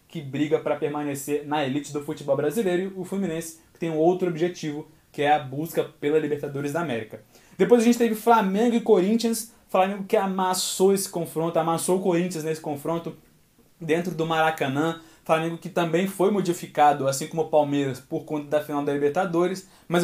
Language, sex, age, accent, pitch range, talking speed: Portuguese, male, 20-39, Brazilian, 145-180 Hz, 180 wpm